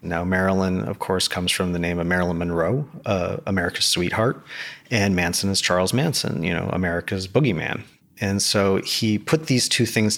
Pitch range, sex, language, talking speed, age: 95-110 Hz, male, English, 175 wpm, 30-49